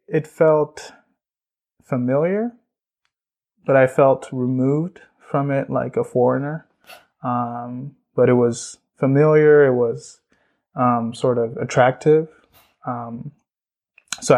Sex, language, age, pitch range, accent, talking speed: male, English, 20-39, 120-140 Hz, American, 105 wpm